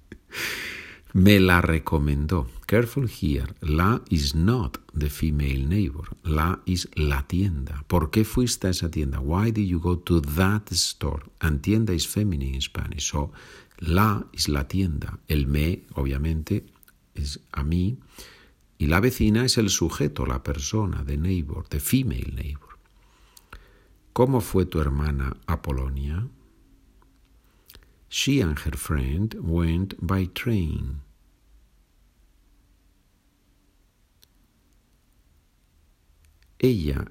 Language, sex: Spanish, male